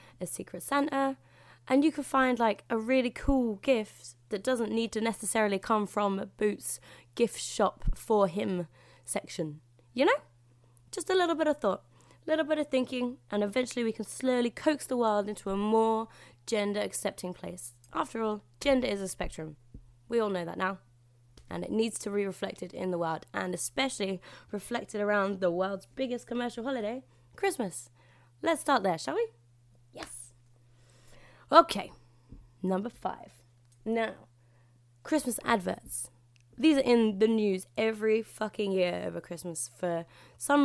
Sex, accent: female, British